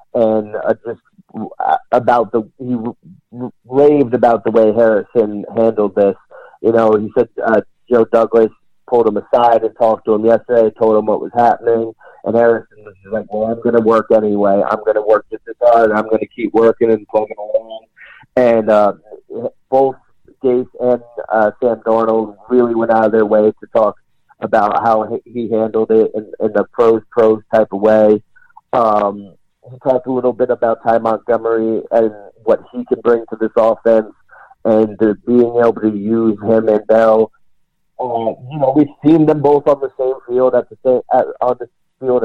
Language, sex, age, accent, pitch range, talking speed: English, male, 40-59, American, 110-125 Hz, 190 wpm